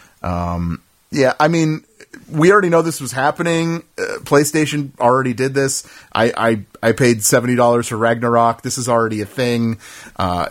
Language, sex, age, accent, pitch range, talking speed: English, male, 30-49, American, 120-155 Hz, 165 wpm